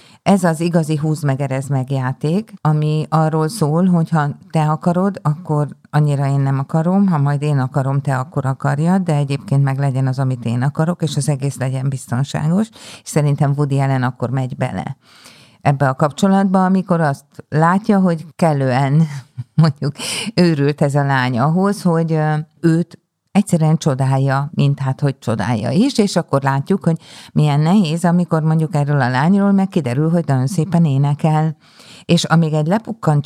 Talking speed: 160 wpm